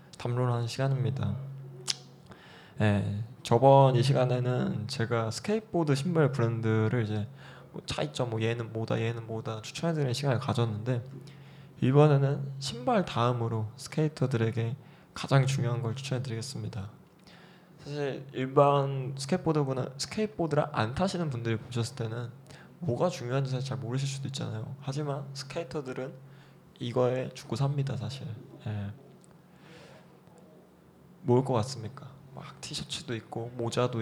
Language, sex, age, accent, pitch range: Korean, male, 20-39, native, 115-150 Hz